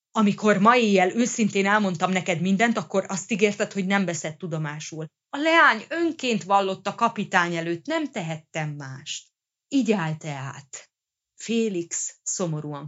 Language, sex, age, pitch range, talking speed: Hungarian, female, 30-49, 155-200 Hz, 130 wpm